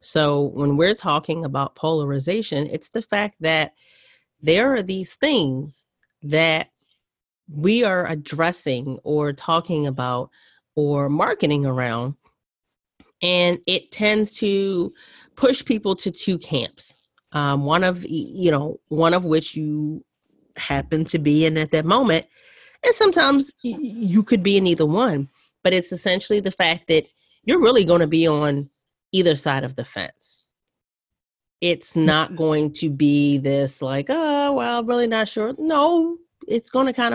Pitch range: 150-210 Hz